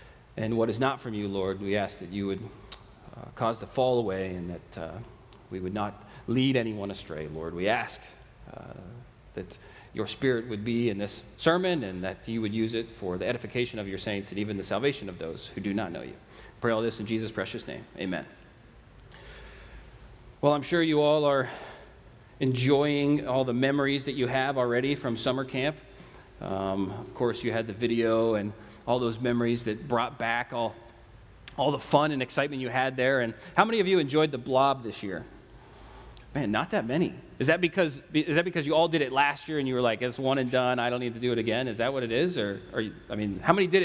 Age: 30-49